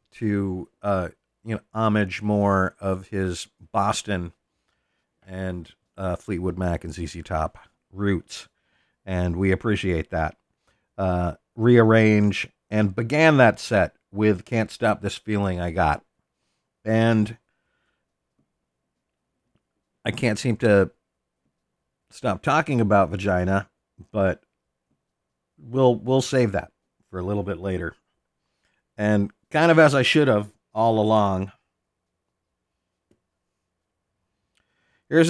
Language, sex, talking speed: English, male, 105 wpm